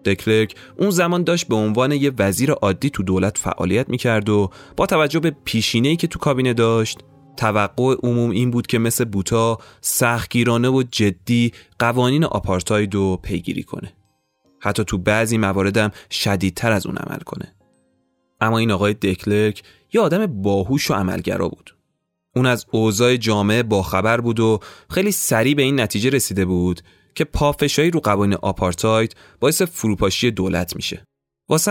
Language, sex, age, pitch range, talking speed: Persian, male, 30-49, 100-130 Hz, 150 wpm